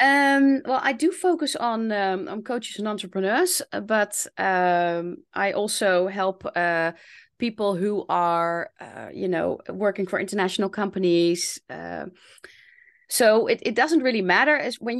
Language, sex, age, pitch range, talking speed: Dutch, female, 20-39, 180-240 Hz, 145 wpm